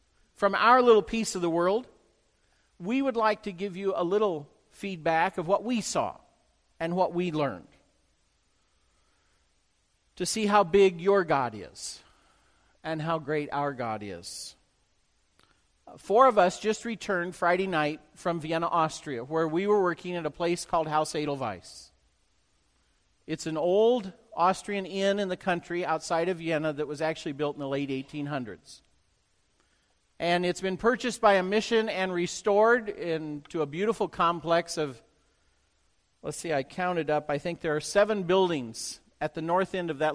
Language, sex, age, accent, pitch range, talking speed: English, male, 50-69, American, 145-200 Hz, 160 wpm